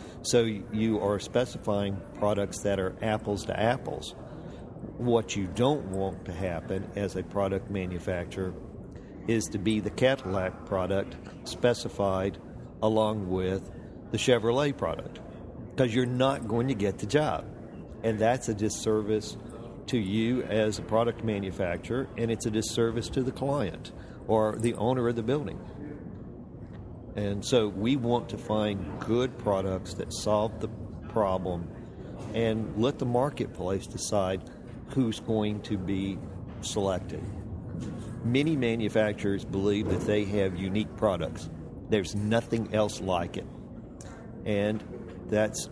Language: English